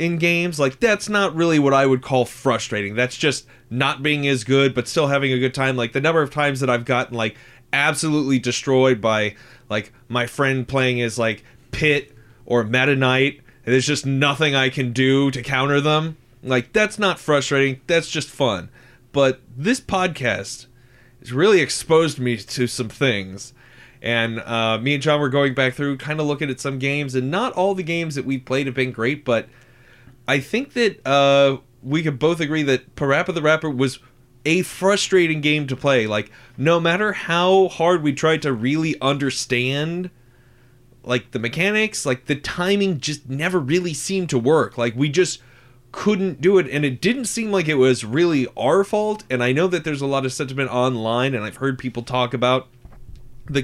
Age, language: 20-39, English